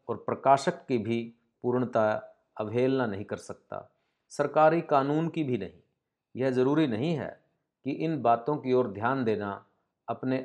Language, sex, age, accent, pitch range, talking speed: Hindi, male, 50-69, native, 110-145 Hz, 150 wpm